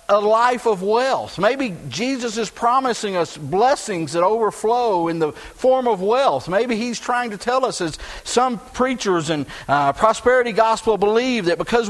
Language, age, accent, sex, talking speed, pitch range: English, 50-69, American, male, 165 wpm, 170-245 Hz